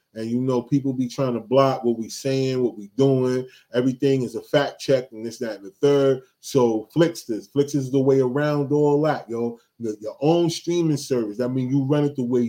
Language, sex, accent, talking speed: English, male, American, 215 wpm